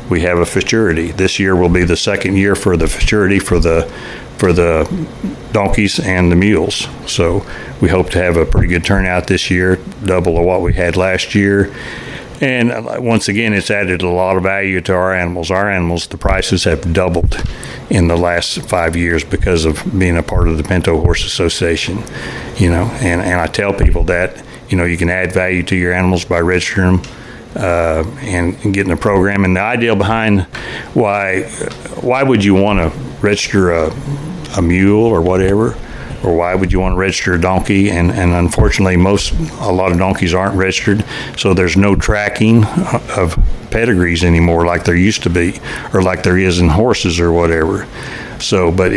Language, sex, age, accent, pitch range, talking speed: English, male, 60-79, American, 85-105 Hz, 190 wpm